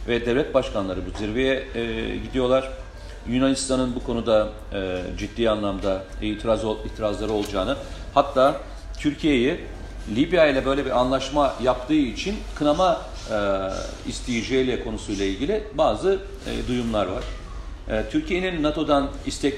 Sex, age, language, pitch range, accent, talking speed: male, 40-59, Turkish, 105-140 Hz, native, 120 wpm